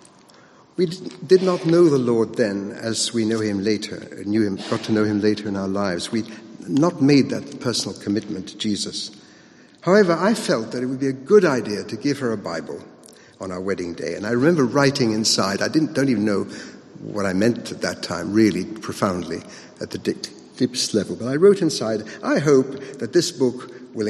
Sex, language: male, English